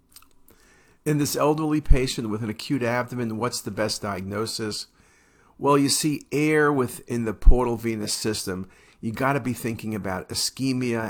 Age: 50-69